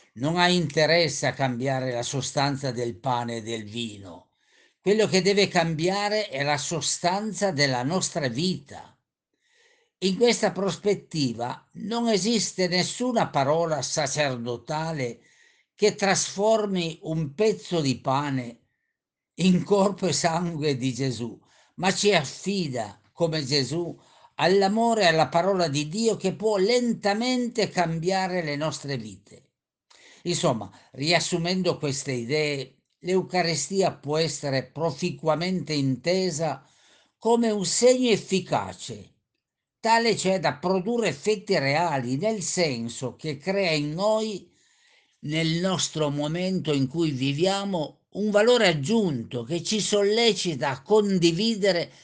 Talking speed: 115 wpm